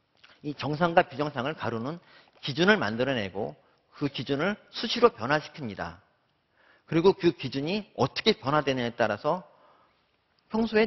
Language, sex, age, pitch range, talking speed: English, male, 40-59, 130-195 Hz, 95 wpm